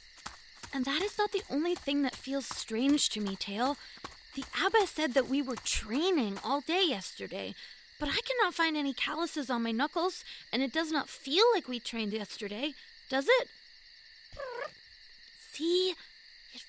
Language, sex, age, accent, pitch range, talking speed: English, female, 20-39, American, 260-370 Hz, 160 wpm